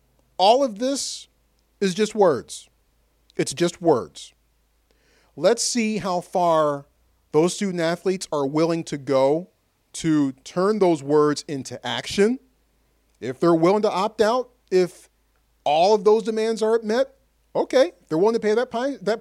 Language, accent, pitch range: English, American, 140-215 Hz